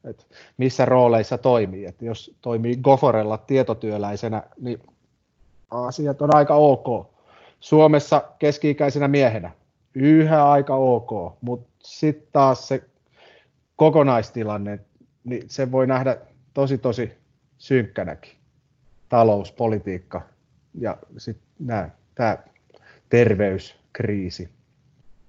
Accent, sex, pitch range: native, male, 105-140 Hz